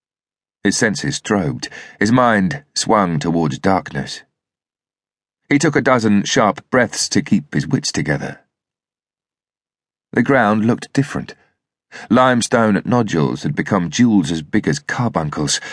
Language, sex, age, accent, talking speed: English, male, 40-59, British, 120 wpm